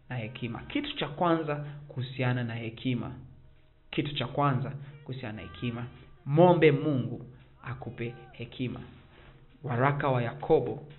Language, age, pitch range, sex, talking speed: Swahili, 40-59, 125-150 Hz, male, 135 wpm